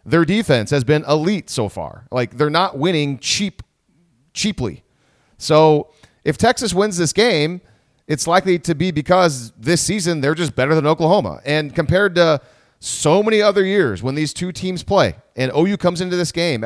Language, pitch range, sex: English, 140-185 Hz, male